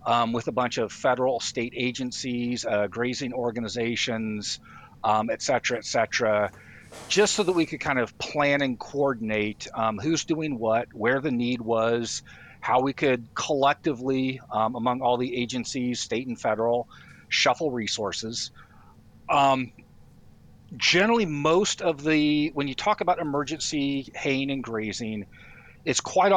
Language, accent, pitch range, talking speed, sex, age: English, American, 115-140 Hz, 145 wpm, male, 40-59